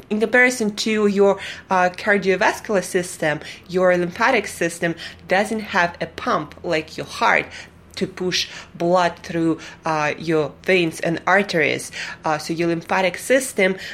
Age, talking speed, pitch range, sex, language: 20-39, 135 wpm, 165-195 Hz, female, English